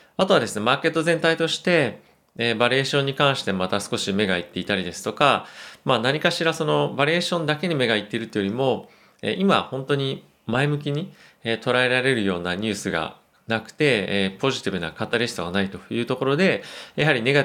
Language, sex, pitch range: Japanese, male, 95-130 Hz